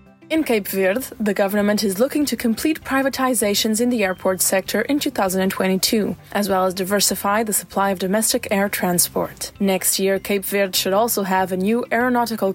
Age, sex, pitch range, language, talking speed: 20-39, female, 190-245 Hz, English, 170 wpm